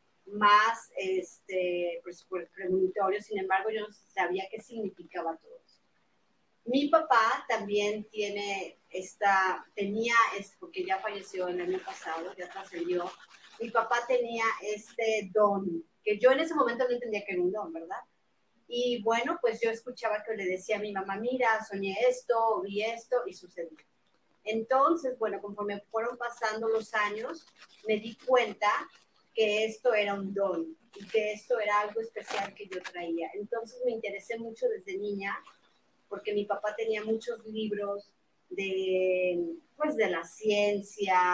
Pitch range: 185-225 Hz